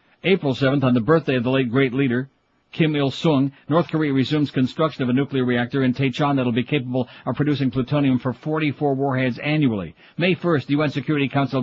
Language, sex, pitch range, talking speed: English, male, 130-145 Hz, 200 wpm